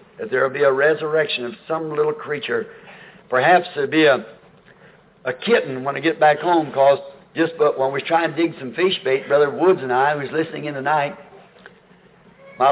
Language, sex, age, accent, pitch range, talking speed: English, male, 60-79, American, 150-175 Hz, 190 wpm